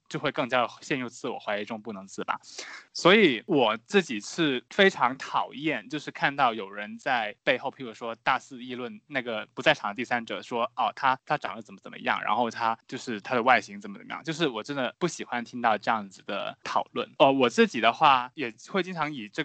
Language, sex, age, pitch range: Chinese, male, 20-39, 120-155 Hz